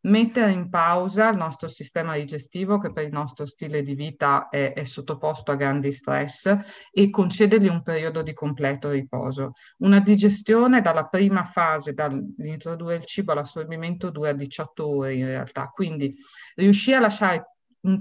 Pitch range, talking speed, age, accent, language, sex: 150-205 Hz, 155 wpm, 50-69, native, Italian, female